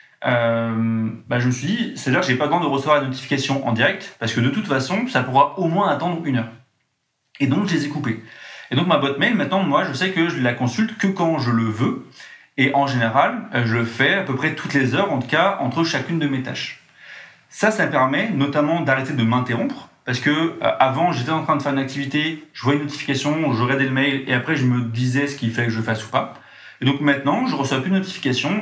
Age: 30-49